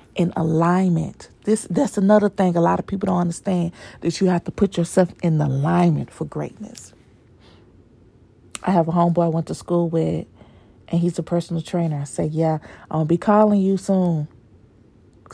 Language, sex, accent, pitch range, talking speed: English, female, American, 110-175 Hz, 185 wpm